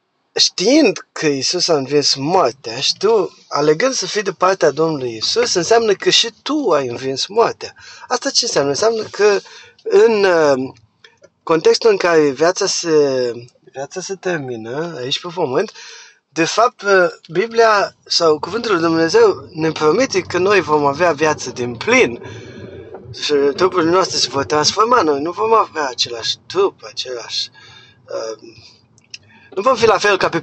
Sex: male